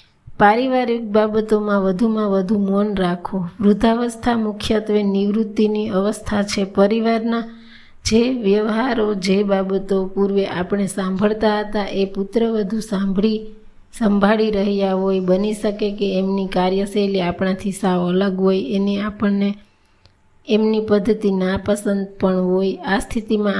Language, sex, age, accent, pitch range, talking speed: Gujarati, female, 20-39, native, 195-215 Hz, 115 wpm